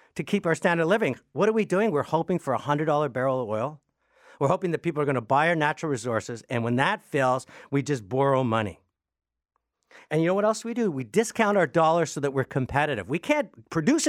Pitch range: 140-200 Hz